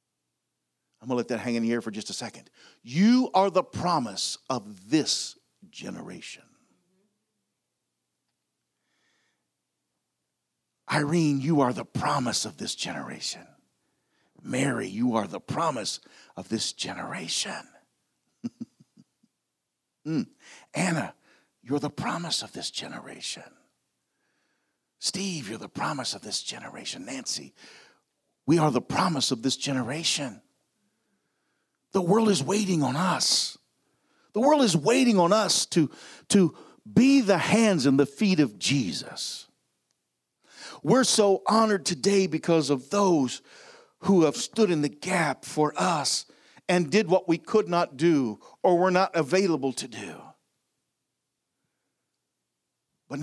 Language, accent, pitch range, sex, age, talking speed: English, American, 130-195 Hz, male, 50-69, 125 wpm